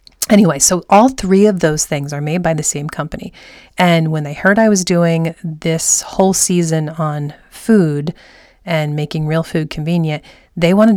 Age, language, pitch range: 30-49, English, 155-200 Hz